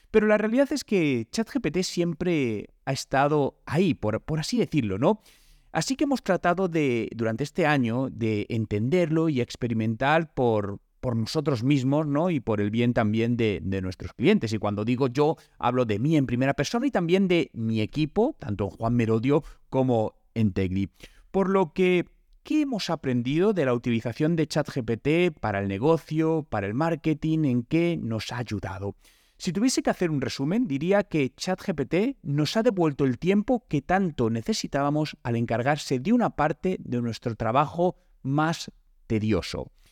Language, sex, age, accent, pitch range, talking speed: Spanish, male, 30-49, Spanish, 115-170 Hz, 170 wpm